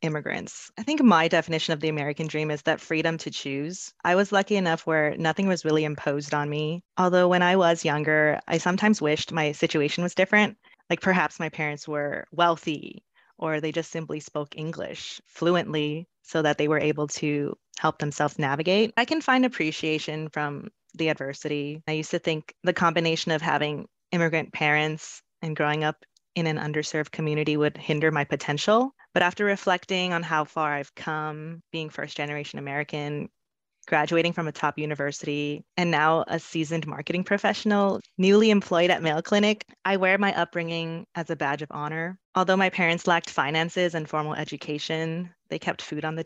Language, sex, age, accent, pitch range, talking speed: English, female, 20-39, American, 150-175 Hz, 175 wpm